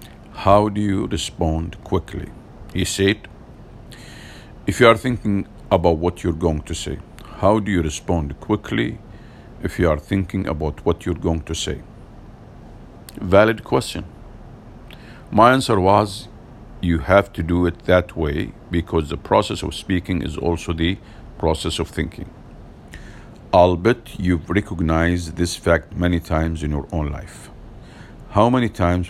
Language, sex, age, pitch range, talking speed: English, male, 50-69, 85-105 Hz, 145 wpm